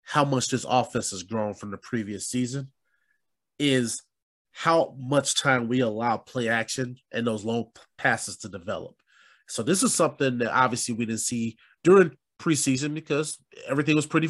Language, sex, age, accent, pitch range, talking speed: English, male, 30-49, American, 125-155 Hz, 165 wpm